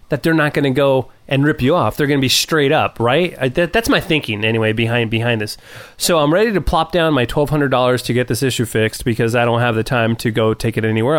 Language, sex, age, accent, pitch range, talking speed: English, male, 30-49, American, 120-150 Hz, 255 wpm